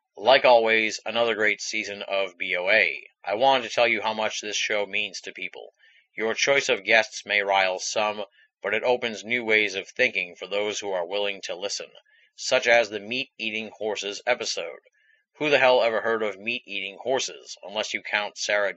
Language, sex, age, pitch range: English, male, 30-49, 100-120 Hz